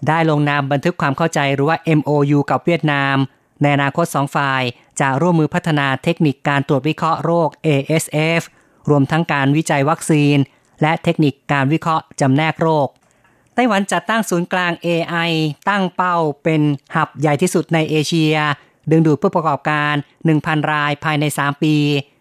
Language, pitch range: Thai, 145-165 Hz